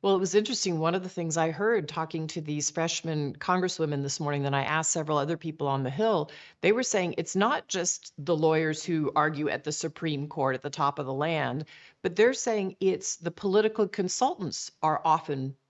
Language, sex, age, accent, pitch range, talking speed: English, female, 40-59, American, 155-210 Hz, 210 wpm